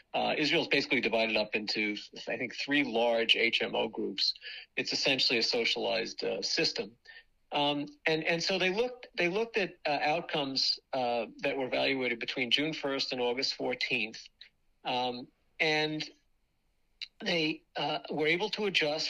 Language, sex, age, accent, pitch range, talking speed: English, male, 50-69, American, 130-165 Hz, 150 wpm